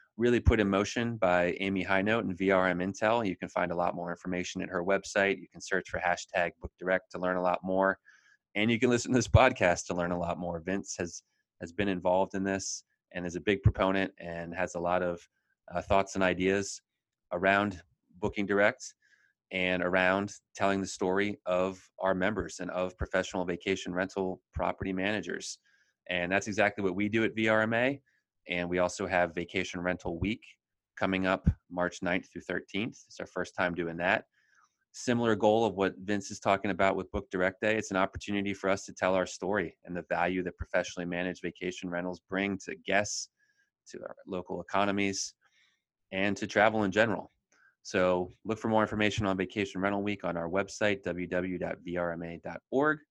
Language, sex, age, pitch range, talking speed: English, male, 30-49, 90-100 Hz, 185 wpm